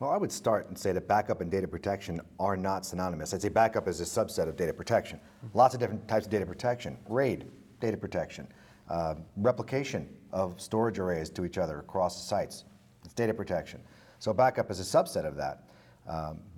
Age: 40-59